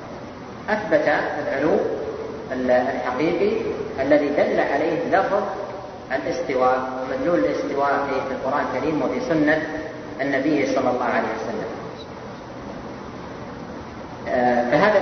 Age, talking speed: 30-49, 90 wpm